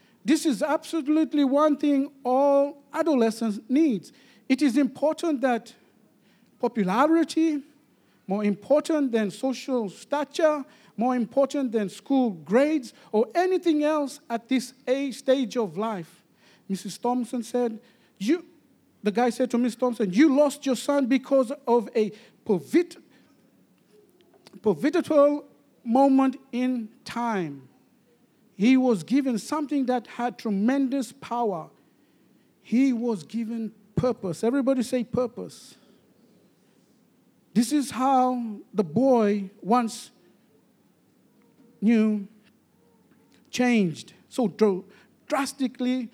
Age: 50-69